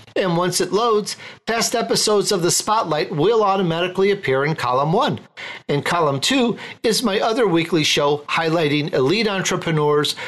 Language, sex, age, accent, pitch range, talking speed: English, male, 50-69, American, 145-200 Hz, 150 wpm